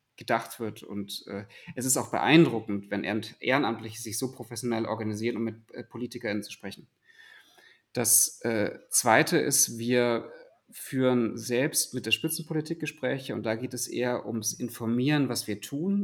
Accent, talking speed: German, 155 wpm